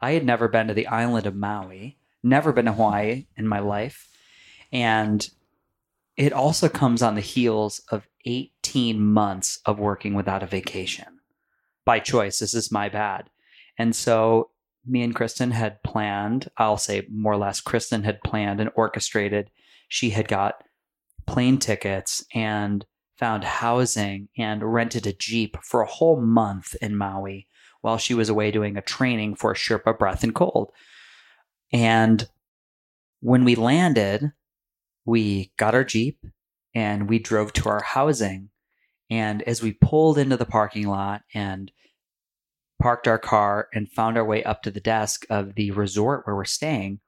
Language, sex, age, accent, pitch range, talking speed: English, male, 20-39, American, 105-120 Hz, 160 wpm